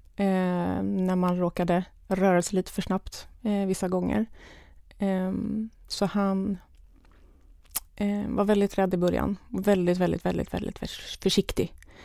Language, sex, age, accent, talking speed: Swedish, female, 20-39, native, 130 wpm